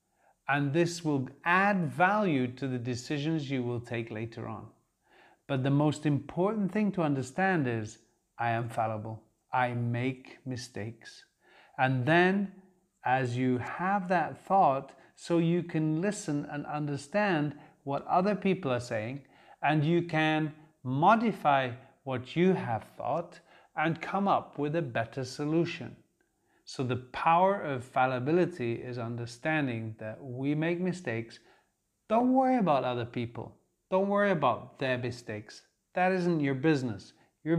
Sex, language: male, English